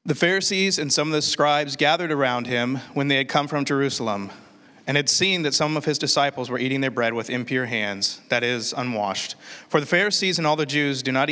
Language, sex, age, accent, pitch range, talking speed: English, male, 30-49, American, 125-155 Hz, 230 wpm